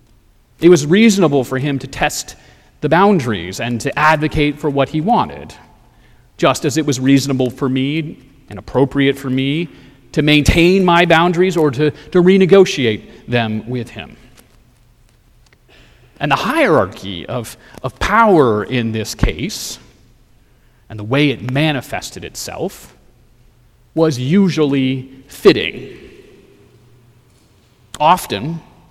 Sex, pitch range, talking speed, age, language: male, 120-150 Hz, 120 wpm, 30-49, English